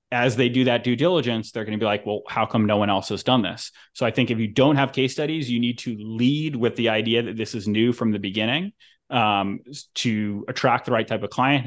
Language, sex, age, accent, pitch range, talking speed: English, male, 30-49, American, 110-135 Hz, 260 wpm